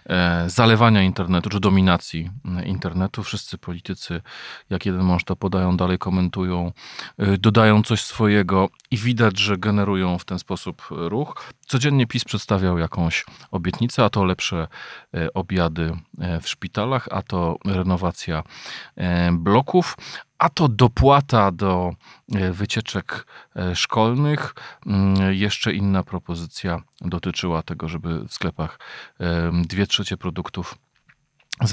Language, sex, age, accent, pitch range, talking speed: Polish, male, 40-59, native, 90-115 Hz, 110 wpm